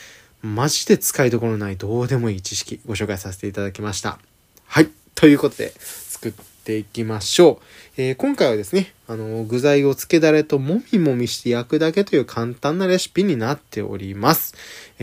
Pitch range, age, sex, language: 105-155 Hz, 20-39, male, Japanese